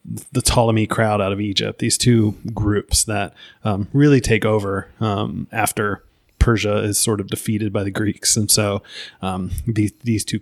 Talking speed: 175 wpm